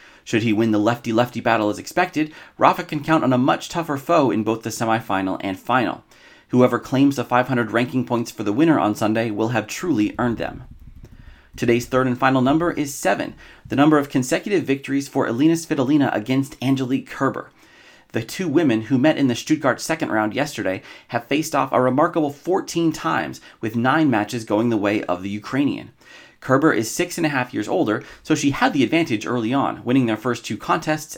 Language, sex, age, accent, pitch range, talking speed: English, male, 30-49, American, 115-145 Hz, 190 wpm